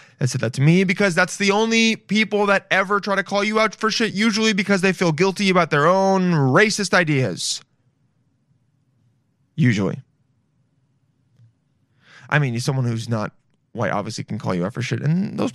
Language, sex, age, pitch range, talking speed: English, male, 20-39, 135-195 Hz, 175 wpm